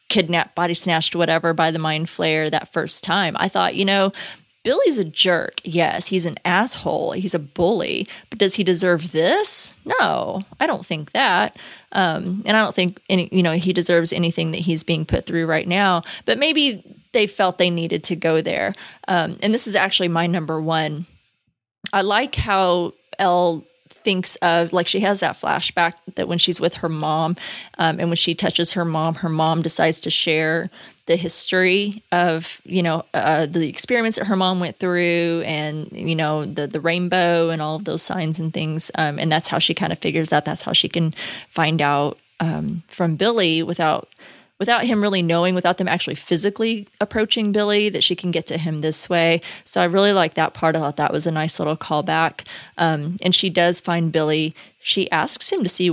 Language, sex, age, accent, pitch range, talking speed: English, female, 20-39, American, 160-190 Hz, 200 wpm